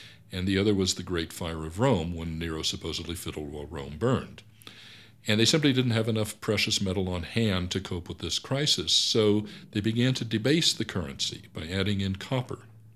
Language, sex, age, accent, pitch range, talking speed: English, male, 60-79, American, 90-110 Hz, 195 wpm